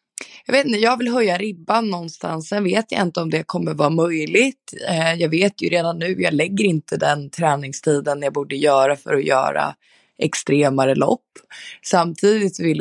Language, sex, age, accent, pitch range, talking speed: Swedish, female, 20-39, native, 140-180 Hz, 175 wpm